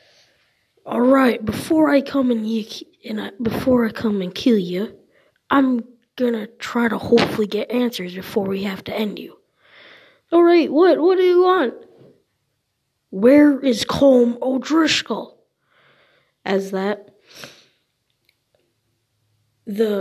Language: English